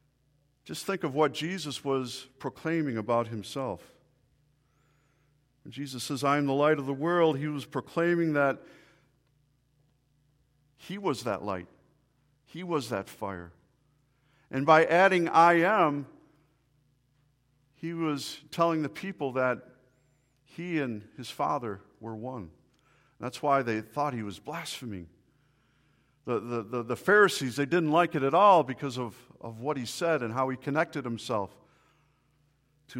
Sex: male